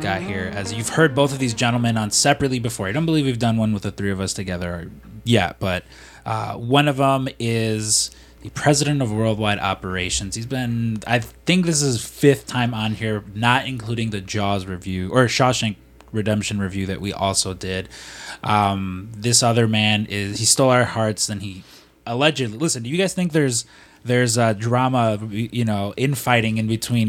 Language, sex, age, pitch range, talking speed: English, male, 20-39, 100-125 Hz, 190 wpm